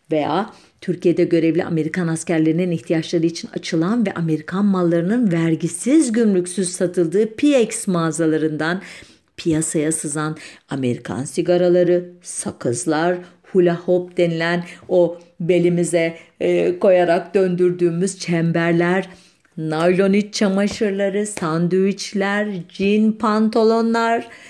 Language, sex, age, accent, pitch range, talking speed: German, female, 50-69, Turkish, 165-200 Hz, 90 wpm